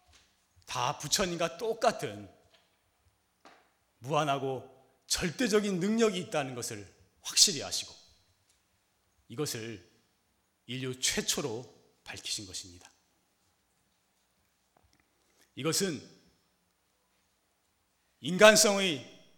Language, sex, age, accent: Korean, male, 40-59, native